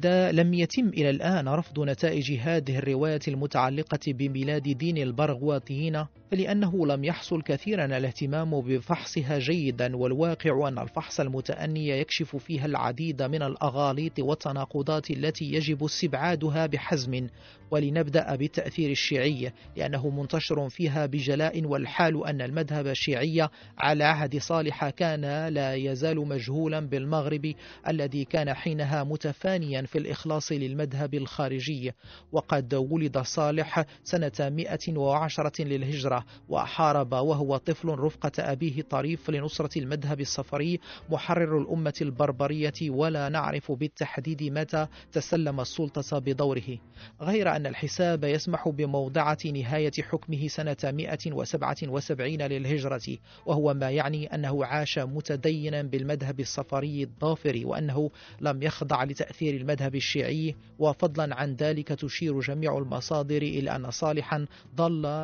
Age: 40-59